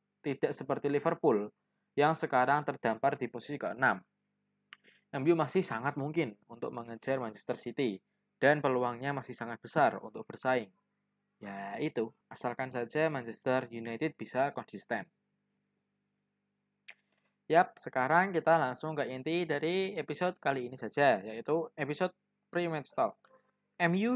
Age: 20-39